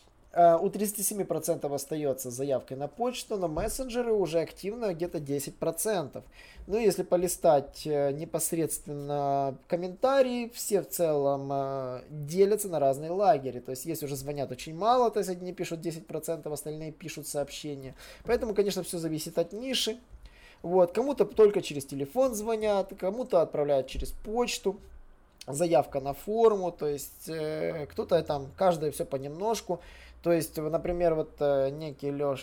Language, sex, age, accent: Russian, male, 20-39, native